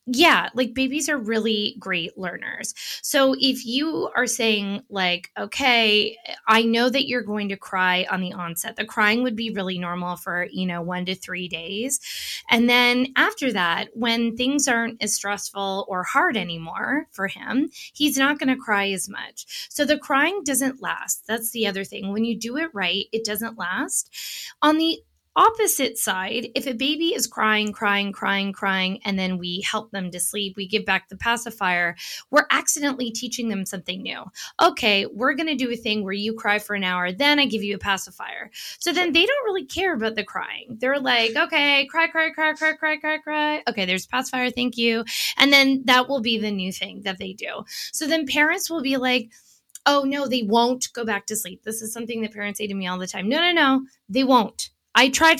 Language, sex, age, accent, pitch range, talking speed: English, female, 20-39, American, 200-265 Hz, 205 wpm